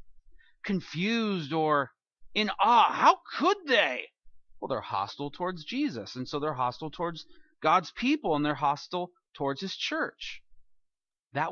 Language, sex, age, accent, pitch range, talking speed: English, male, 40-59, American, 140-195 Hz, 135 wpm